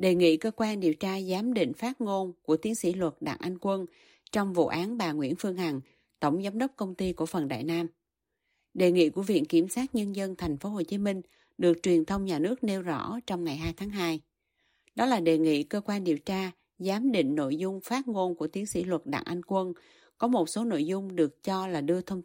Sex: female